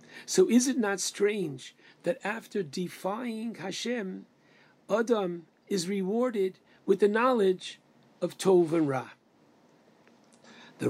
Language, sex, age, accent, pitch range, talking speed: English, male, 50-69, American, 170-200 Hz, 110 wpm